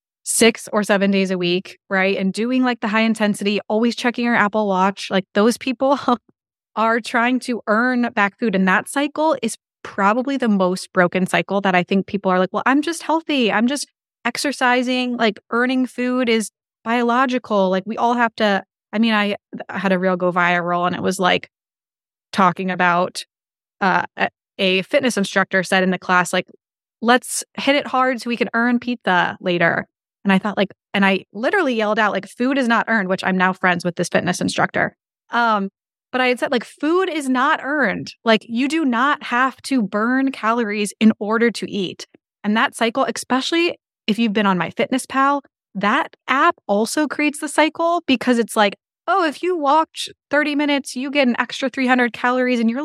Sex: female